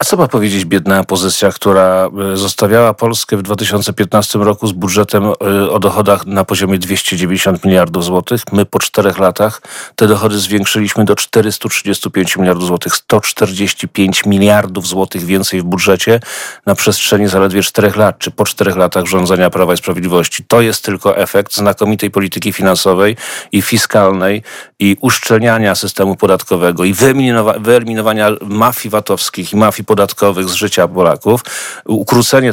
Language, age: Polish, 40-59